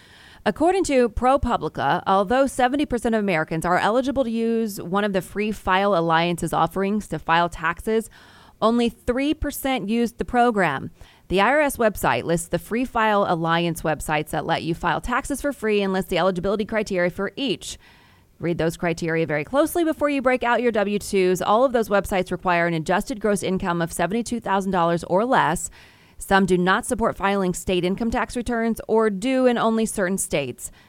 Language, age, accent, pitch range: English, 30-49, American, 175-235 Hz